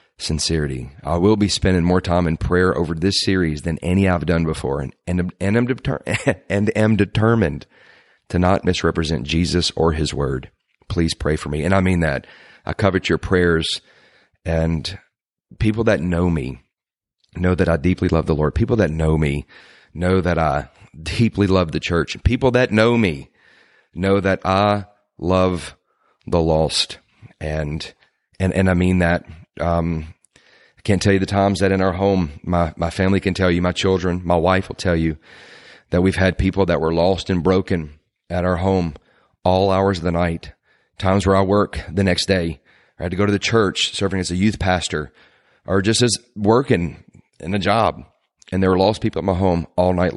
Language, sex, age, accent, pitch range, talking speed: English, male, 40-59, American, 85-95 Hz, 190 wpm